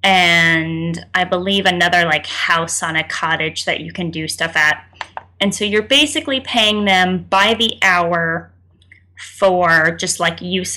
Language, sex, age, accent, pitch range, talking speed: English, female, 10-29, American, 165-200 Hz, 155 wpm